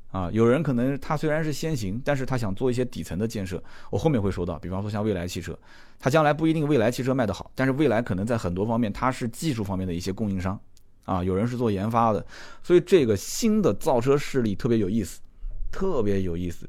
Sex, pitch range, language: male, 95-125 Hz, Chinese